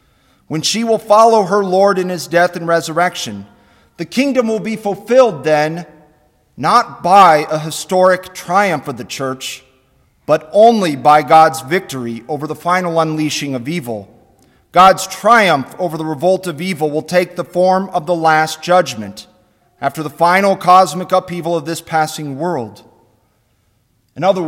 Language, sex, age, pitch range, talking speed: English, male, 40-59, 135-180 Hz, 150 wpm